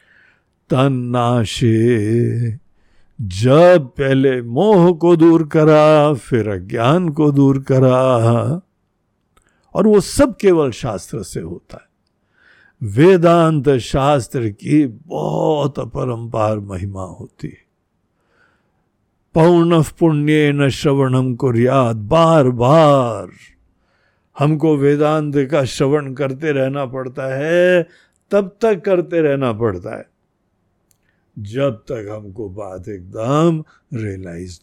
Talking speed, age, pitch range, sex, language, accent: 95 wpm, 60-79, 115-160 Hz, male, Hindi, native